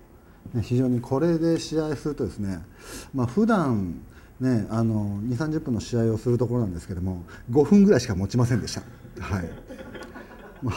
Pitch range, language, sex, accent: 95-130 Hz, Japanese, male, native